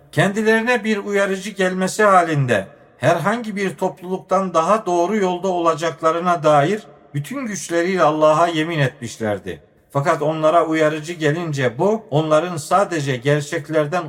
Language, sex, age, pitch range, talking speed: Turkish, male, 50-69, 145-180 Hz, 110 wpm